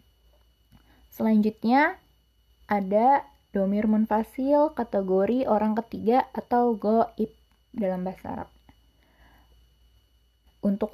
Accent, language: native, Indonesian